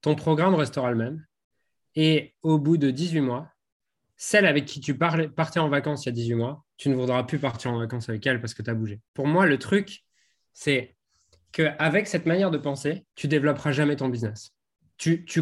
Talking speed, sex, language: 215 wpm, male, French